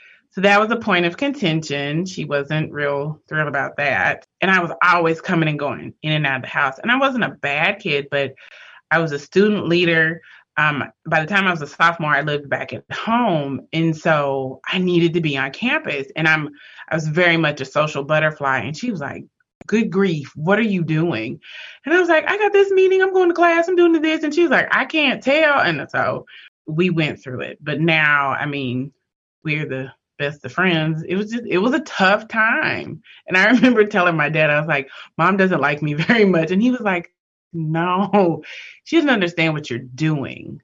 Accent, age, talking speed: American, 20-39, 220 wpm